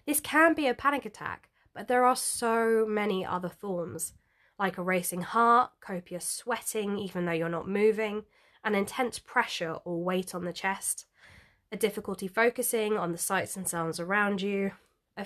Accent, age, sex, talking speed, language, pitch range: British, 20-39, female, 170 wpm, English, 180-235 Hz